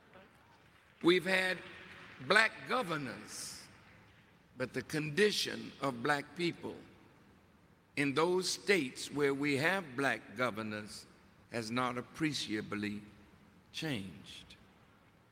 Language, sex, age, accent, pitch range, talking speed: English, male, 60-79, American, 125-200 Hz, 85 wpm